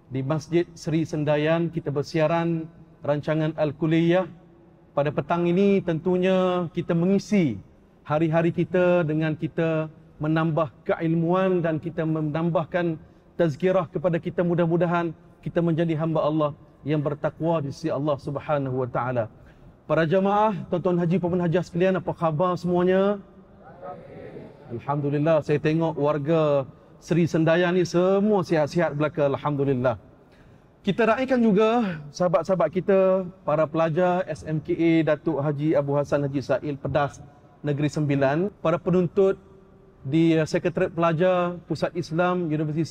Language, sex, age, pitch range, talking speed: Malay, male, 40-59, 155-180 Hz, 115 wpm